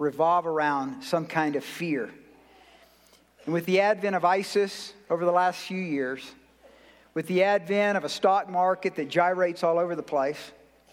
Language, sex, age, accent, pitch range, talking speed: English, male, 50-69, American, 160-210 Hz, 165 wpm